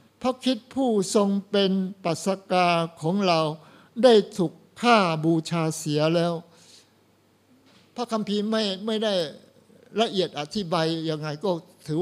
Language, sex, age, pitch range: Thai, male, 60-79, 175-230 Hz